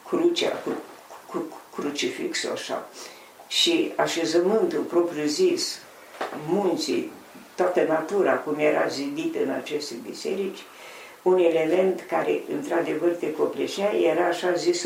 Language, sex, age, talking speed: Romanian, female, 50-69, 115 wpm